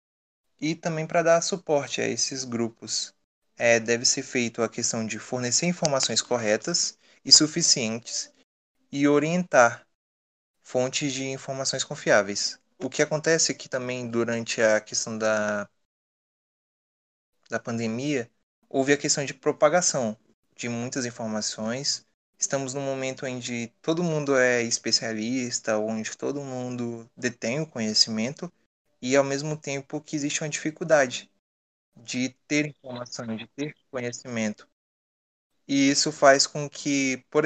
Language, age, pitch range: Portuguese, 20-39, 115-140 Hz